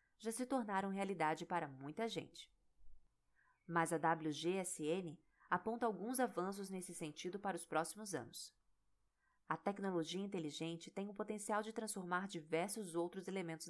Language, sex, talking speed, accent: Portuguese, female, 130 wpm, Brazilian